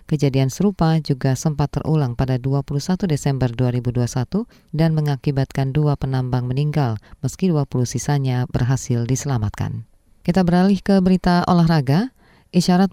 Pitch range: 130-165 Hz